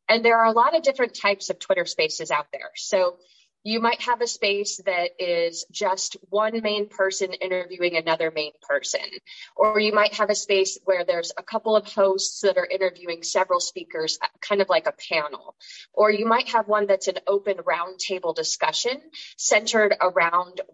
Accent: American